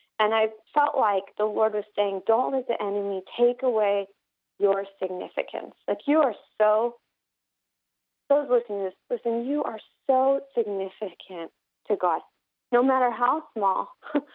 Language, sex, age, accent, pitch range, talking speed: English, female, 30-49, American, 200-255 Hz, 145 wpm